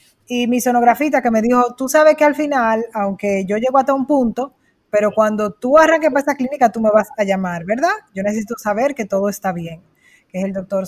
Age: 20-39